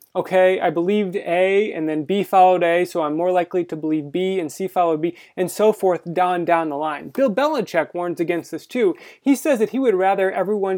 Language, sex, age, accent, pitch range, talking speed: English, male, 20-39, American, 160-200 Hz, 225 wpm